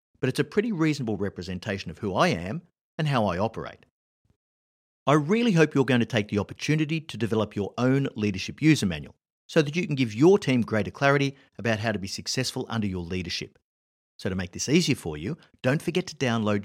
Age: 50-69